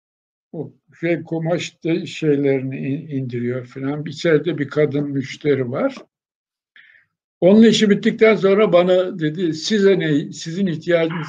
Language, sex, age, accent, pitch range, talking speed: Turkish, male, 60-79, native, 155-210 Hz, 110 wpm